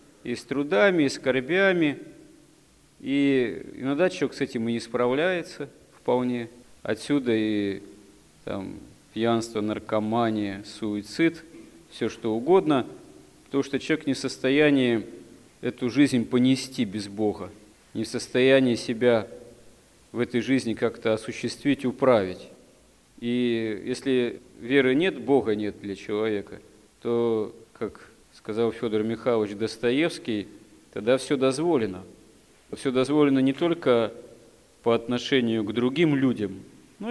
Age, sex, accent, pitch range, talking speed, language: 40-59, male, native, 115-140 Hz, 115 wpm, Russian